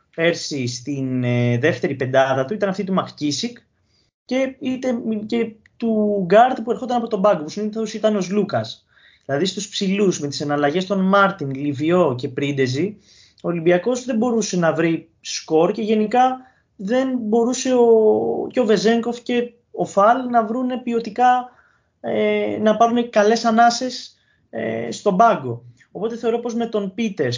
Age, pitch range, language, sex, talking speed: 20-39, 145-225 Hz, Greek, male, 155 wpm